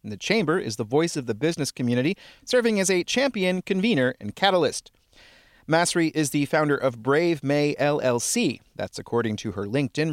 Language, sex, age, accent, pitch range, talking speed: English, male, 30-49, American, 120-180 Hz, 170 wpm